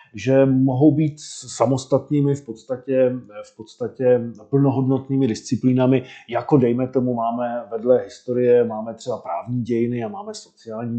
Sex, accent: male, native